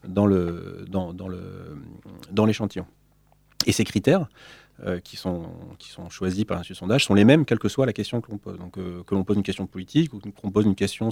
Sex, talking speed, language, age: male, 235 wpm, French, 30-49